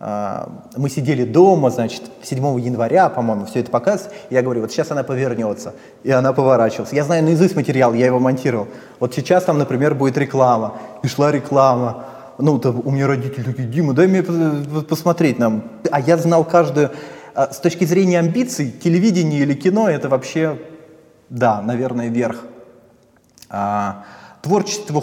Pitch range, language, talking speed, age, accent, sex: 120-160 Hz, Russian, 150 wpm, 20-39, native, male